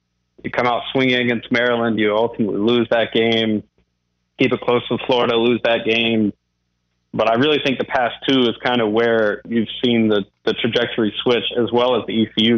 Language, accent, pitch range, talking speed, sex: English, American, 105-120 Hz, 195 wpm, male